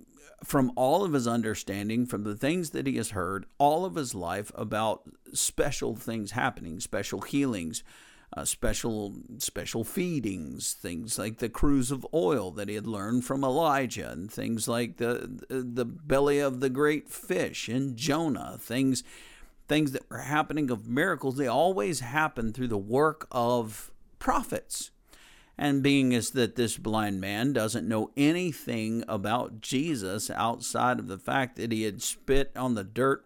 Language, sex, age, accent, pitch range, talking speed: English, male, 50-69, American, 110-135 Hz, 160 wpm